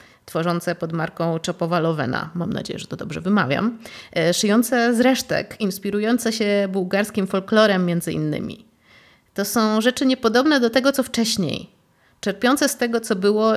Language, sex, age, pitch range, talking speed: Polish, female, 30-49, 170-215 Hz, 145 wpm